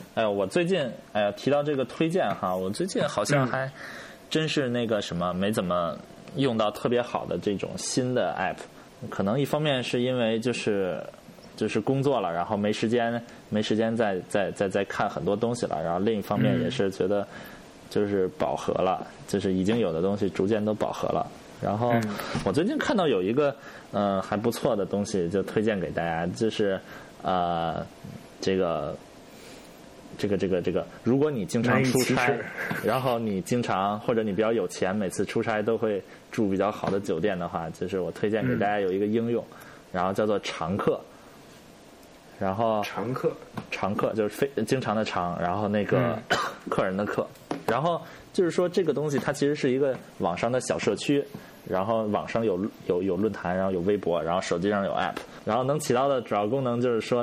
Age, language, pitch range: 20-39, Chinese, 100-130 Hz